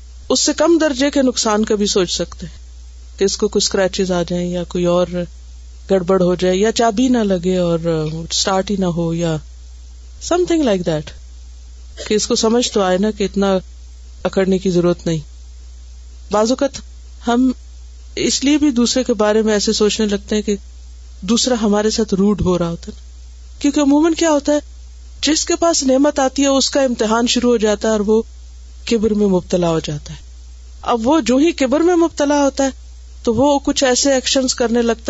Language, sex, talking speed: Urdu, female, 190 wpm